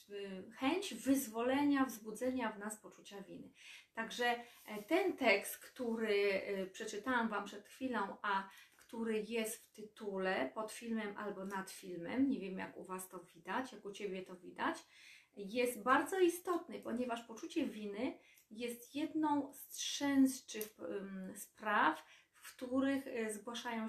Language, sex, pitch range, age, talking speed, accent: Polish, female, 210-270 Hz, 30-49, 130 wpm, native